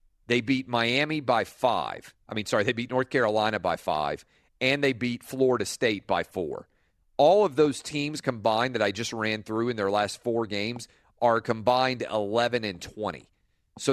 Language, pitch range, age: English, 105-135 Hz, 40-59